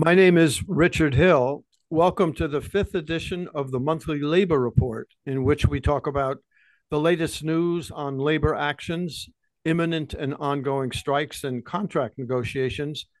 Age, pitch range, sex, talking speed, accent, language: 60-79, 135-160 Hz, male, 150 wpm, American, English